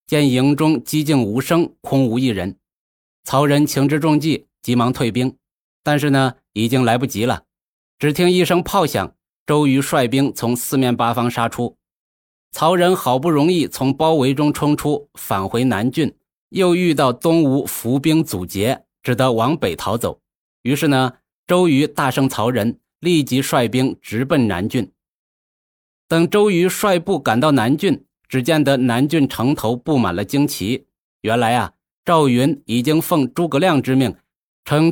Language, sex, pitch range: Chinese, male, 120-155 Hz